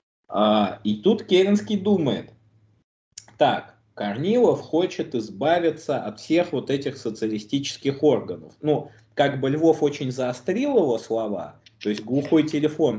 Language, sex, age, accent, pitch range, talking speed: Russian, male, 20-39, native, 110-170 Hz, 120 wpm